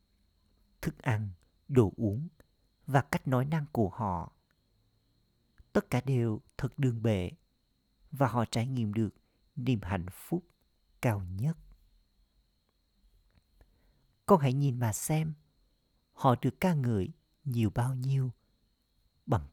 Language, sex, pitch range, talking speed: Vietnamese, male, 90-130 Hz, 120 wpm